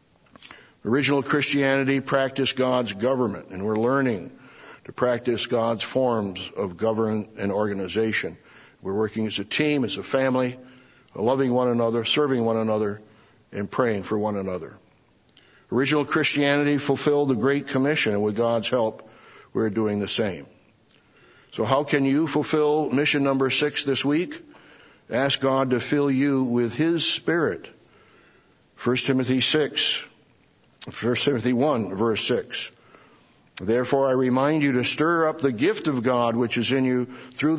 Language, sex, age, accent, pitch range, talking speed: English, male, 60-79, American, 110-135 Hz, 145 wpm